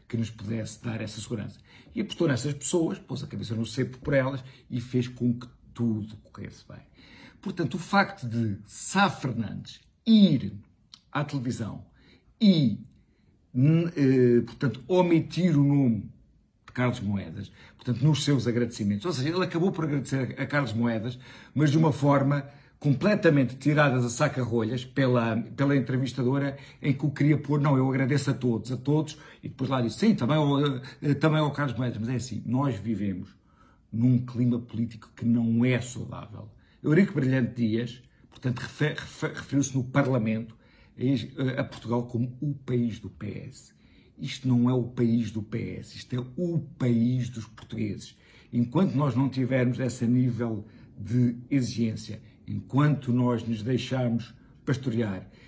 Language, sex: Portuguese, male